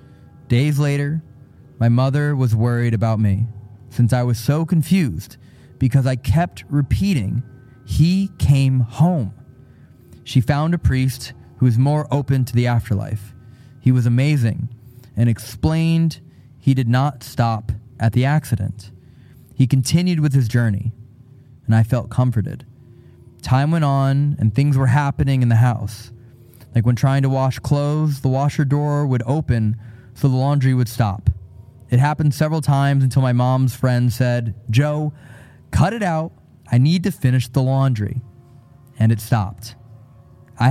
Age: 20-39